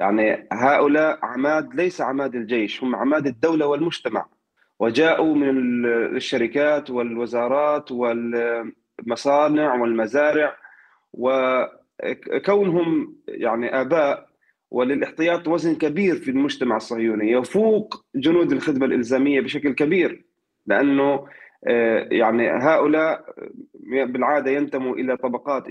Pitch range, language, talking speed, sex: 125-165 Hz, Arabic, 90 wpm, male